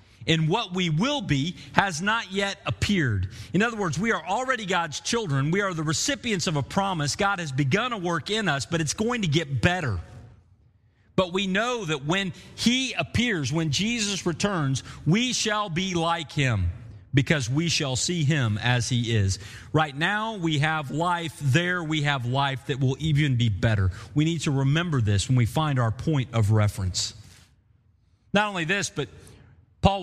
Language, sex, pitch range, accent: English, male, 115-180 Hz, American